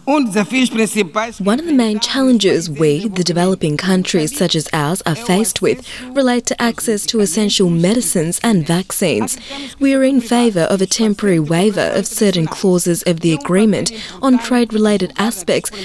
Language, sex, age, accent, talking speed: Finnish, female, 20-39, Australian, 150 wpm